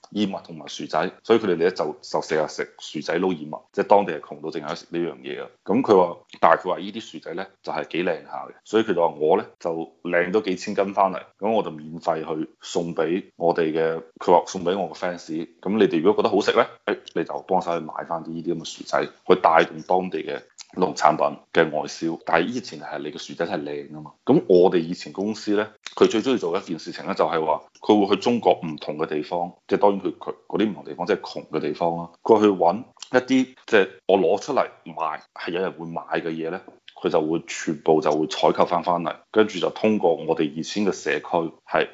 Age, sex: 20-39, male